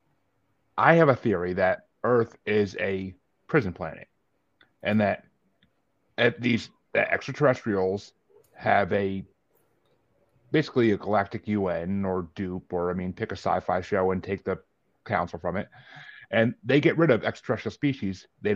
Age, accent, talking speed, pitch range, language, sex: 30-49, American, 145 wpm, 95-110 Hz, English, male